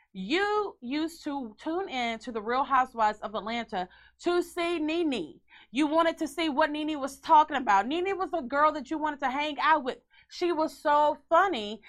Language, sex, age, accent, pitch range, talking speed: English, female, 30-49, American, 195-305 Hz, 190 wpm